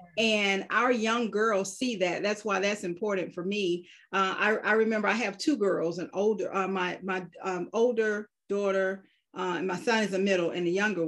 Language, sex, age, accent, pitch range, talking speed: English, female, 40-59, American, 185-230 Hz, 205 wpm